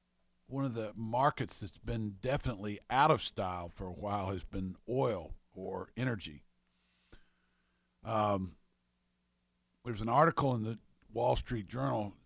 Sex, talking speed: male, 130 wpm